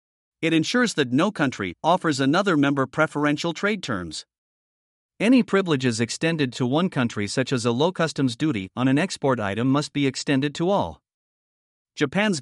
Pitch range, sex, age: 130-170 Hz, male, 50-69